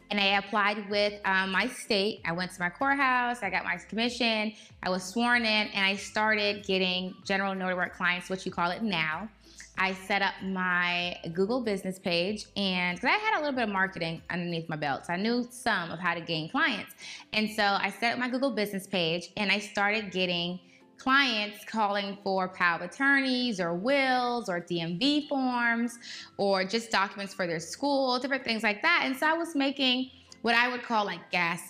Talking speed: 195 wpm